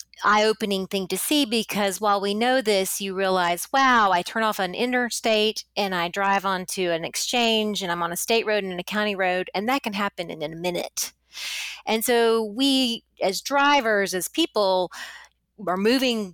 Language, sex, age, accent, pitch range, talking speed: English, female, 30-49, American, 180-225 Hz, 180 wpm